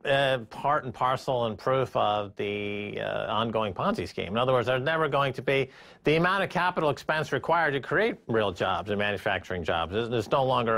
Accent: American